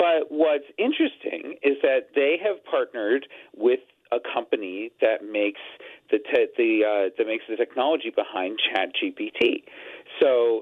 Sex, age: male, 40-59